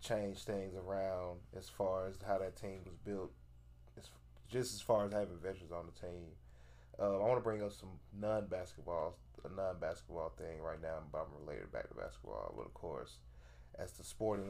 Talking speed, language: 190 wpm, English